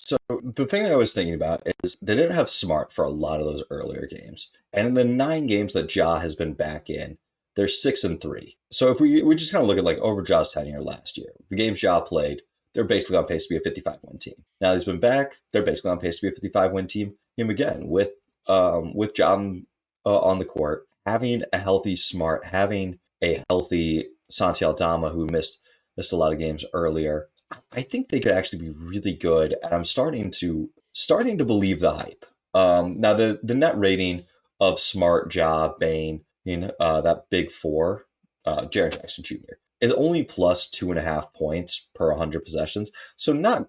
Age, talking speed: 30-49, 220 wpm